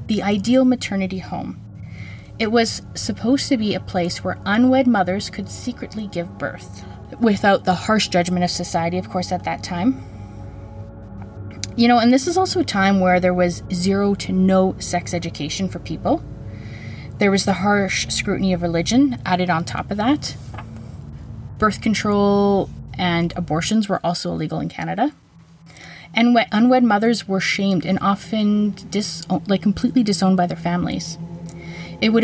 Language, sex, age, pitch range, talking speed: English, female, 20-39, 165-205 Hz, 155 wpm